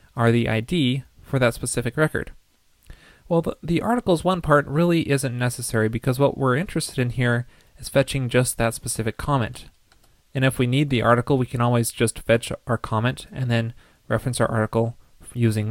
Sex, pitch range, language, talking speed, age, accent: male, 115-140 Hz, English, 180 wpm, 30-49, American